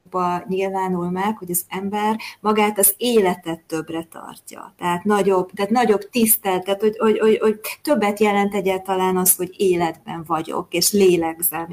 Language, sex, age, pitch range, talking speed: Hungarian, female, 30-49, 180-200 Hz, 150 wpm